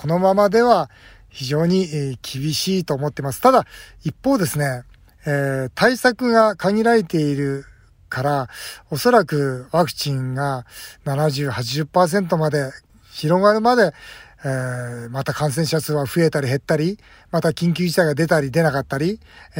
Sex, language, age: male, Japanese, 40-59